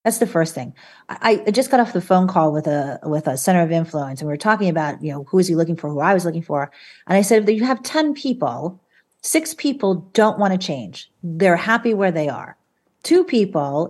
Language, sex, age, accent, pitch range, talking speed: English, female, 40-59, American, 160-215 Hz, 245 wpm